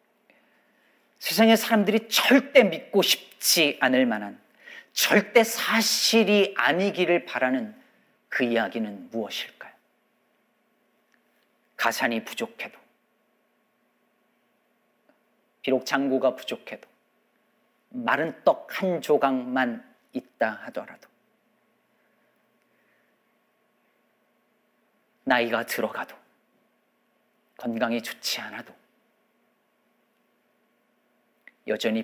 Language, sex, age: Korean, male, 40-59